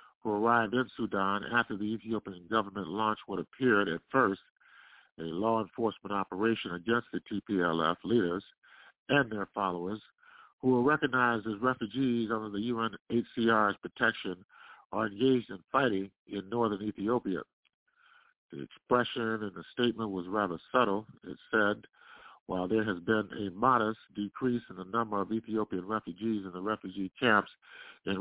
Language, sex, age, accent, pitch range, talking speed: English, male, 50-69, American, 100-120 Hz, 145 wpm